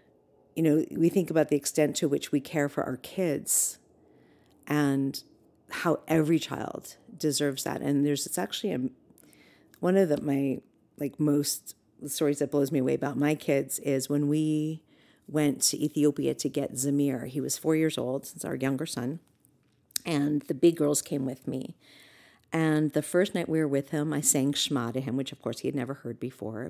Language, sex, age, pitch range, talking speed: English, female, 50-69, 140-170 Hz, 185 wpm